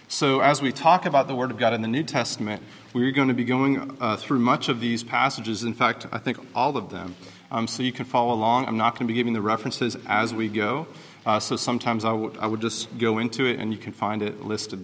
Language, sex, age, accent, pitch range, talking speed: English, male, 30-49, American, 110-140 Hz, 260 wpm